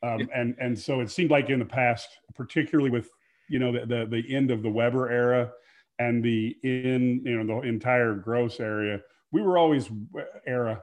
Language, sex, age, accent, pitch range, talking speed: English, male, 40-59, American, 110-135 Hz, 195 wpm